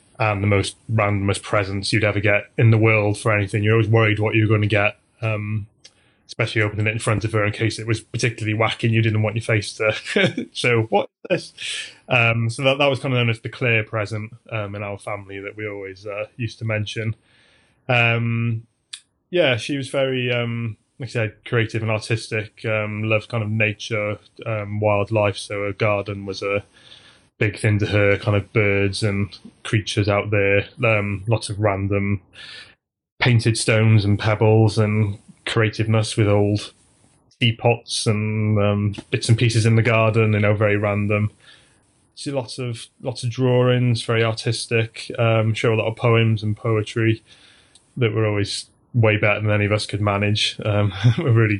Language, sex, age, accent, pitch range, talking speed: English, male, 20-39, British, 105-115 Hz, 185 wpm